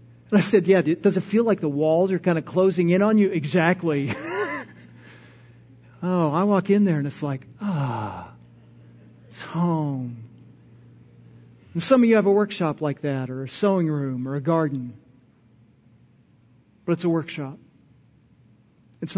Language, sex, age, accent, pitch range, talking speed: English, male, 40-59, American, 140-190 Hz, 155 wpm